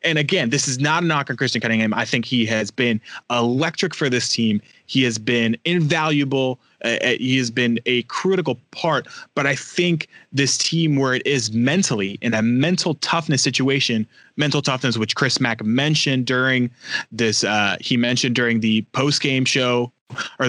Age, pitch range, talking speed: 30-49, 120-145 Hz, 180 wpm